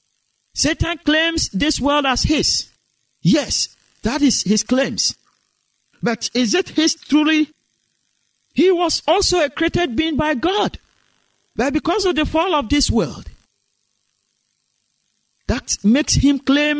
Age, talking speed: 50-69, 130 wpm